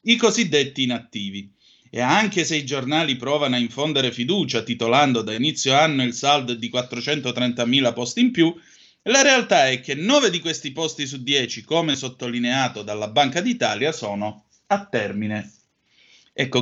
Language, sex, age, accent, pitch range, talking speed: Italian, male, 30-49, native, 120-155 Hz, 150 wpm